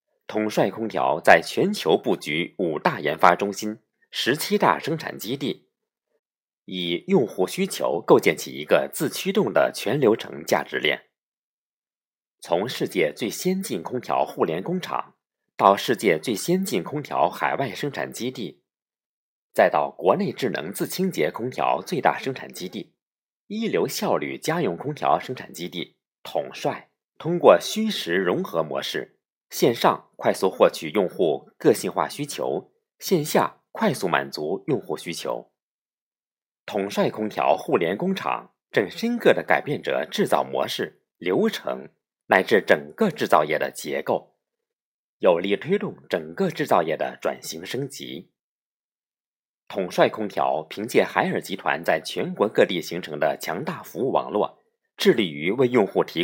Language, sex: Chinese, male